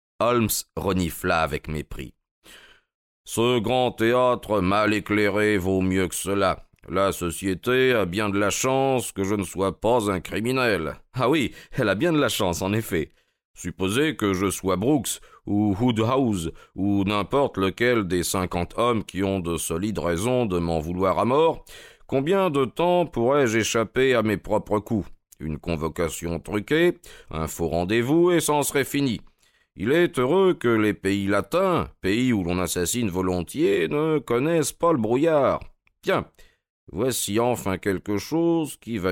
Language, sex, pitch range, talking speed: French, male, 90-125 Hz, 160 wpm